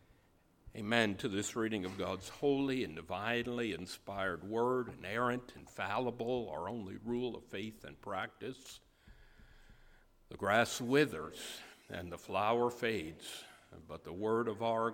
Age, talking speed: 60-79, 130 wpm